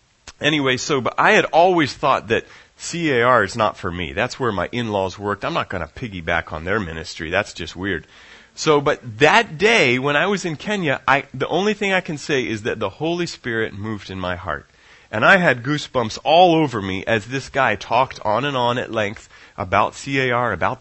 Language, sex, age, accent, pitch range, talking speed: English, male, 30-49, American, 110-150 Hz, 210 wpm